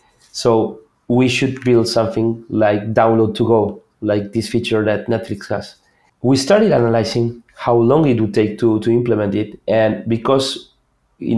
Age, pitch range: 30-49, 110-125 Hz